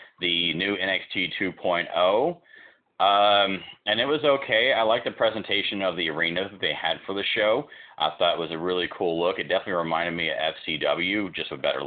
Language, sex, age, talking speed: English, male, 30-49, 190 wpm